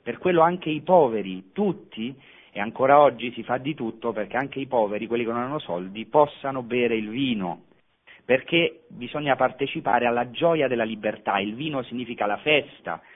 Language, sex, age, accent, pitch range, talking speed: Italian, male, 40-59, native, 105-140 Hz, 175 wpm